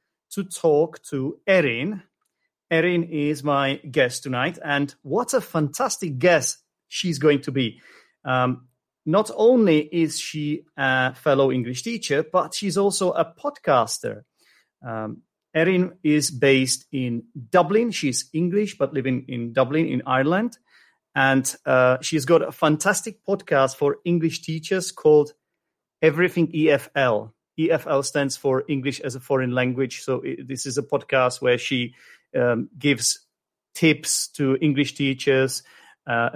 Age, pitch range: 40-59, 130-165 Hz